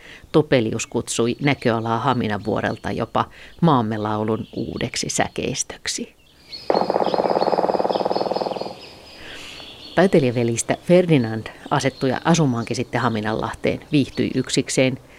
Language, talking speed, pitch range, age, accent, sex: Finnish, 65 wpm, 115-145 Hz, 50-69, native, female